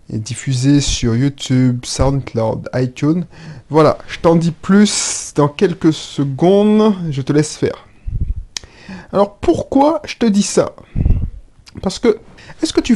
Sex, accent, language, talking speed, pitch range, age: male, French, French, 130 wpm, 135-195 Hz, 30-49